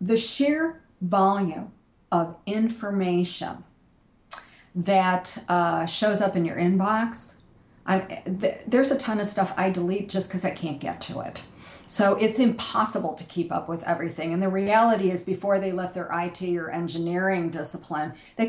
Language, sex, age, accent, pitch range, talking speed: English, female, 50-69, American, 175-215 Hz, 160 wpm